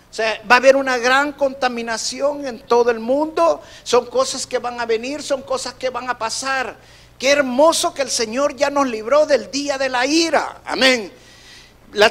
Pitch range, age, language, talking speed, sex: 225-280 Hz, 50-69, Spanish, 195 wpm, male